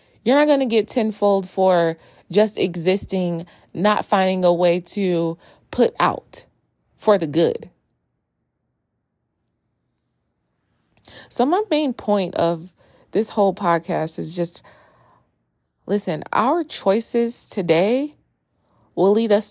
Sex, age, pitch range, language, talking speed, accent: female, 30-49, 175-220 Hz, English, 110 wpm, American